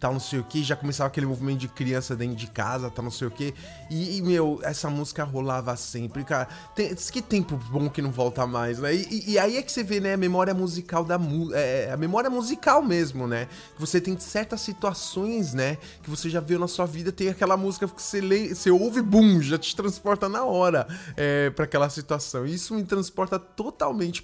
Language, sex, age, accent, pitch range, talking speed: English, male, 20-39, Brazilian, 150-215 Hz, 220 wpm